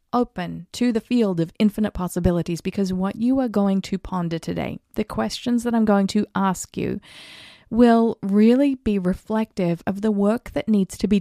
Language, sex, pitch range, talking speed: English, female, 170-215 Hz, 180 wpm